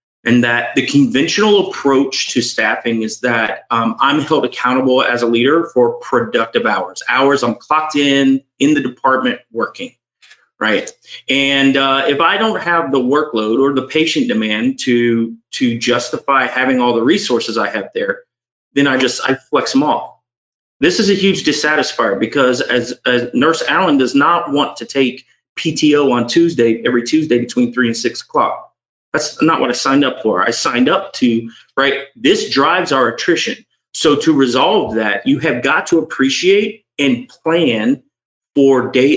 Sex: male